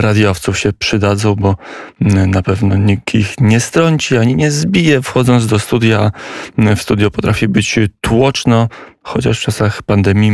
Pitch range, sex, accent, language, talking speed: 100-115 Hz, male, native, Polish, 145 wpm